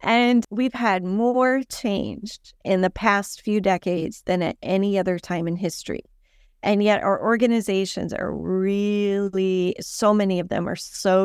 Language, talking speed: English, 155 wpm